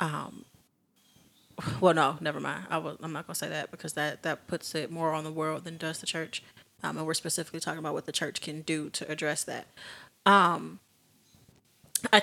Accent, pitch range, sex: American, 155-175 Hz, female